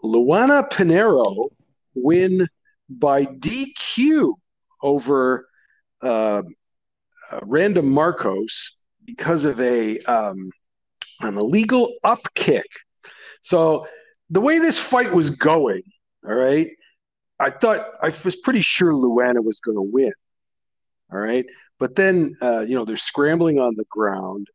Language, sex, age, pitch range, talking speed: English, male, 50-69, 105-175 Hz, 115 wpm